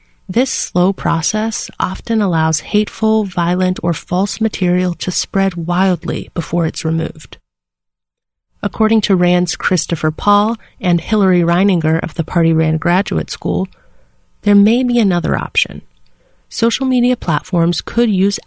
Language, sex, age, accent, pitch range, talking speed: English, female, 30-49, American, 165-205 Hz, 130 wpm